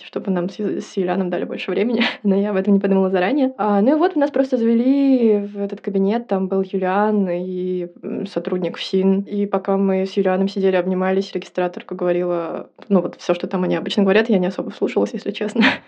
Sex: female